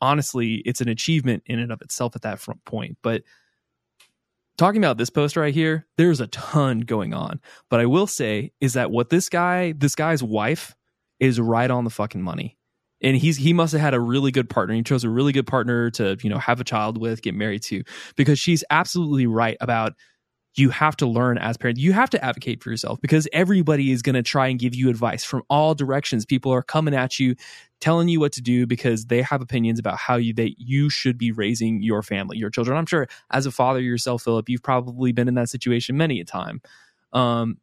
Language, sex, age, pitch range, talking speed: English, male, 20-39, 120-155 Hz, 225 wpm